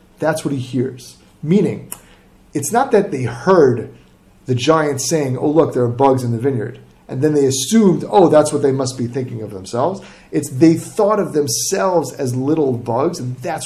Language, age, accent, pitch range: English, 30-49, American, 125-195 Hz